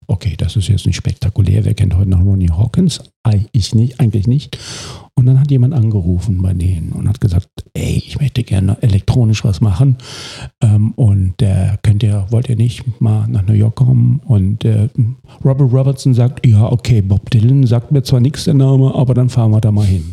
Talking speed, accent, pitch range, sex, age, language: 205 wpm, German, 110-130 Hz, male, 50-69, German